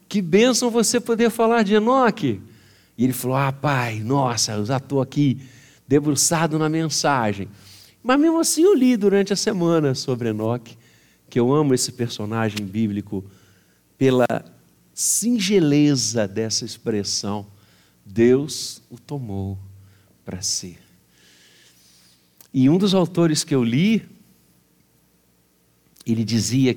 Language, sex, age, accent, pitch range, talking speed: Portuguese, male, 60-79, Brazilian, 95-155 Hz, 120 wpm